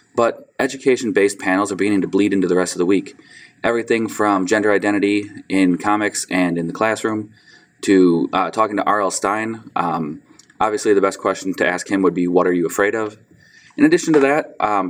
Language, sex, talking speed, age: English, male, 195 wpm, 20-39